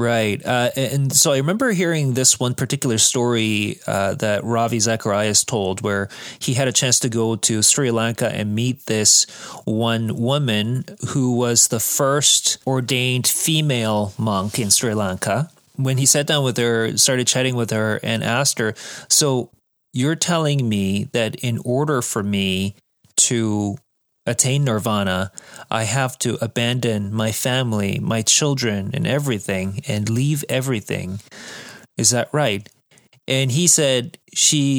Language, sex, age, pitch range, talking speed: English, male, 30-49, 105-135 Hz, 150 wpm